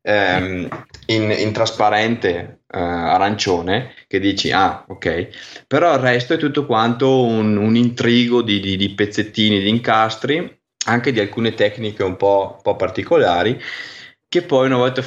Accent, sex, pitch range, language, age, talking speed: native, male, 100-125 Hz, Italian, 20-39, 140 wpm